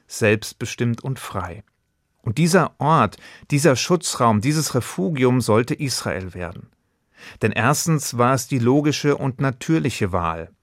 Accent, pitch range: German, 115-145 Hz